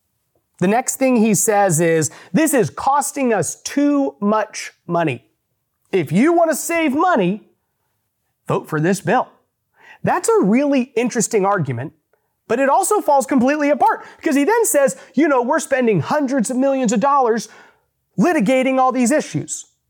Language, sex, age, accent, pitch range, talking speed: English, male, 30-49, American, 170-270 Hz, 155 wpm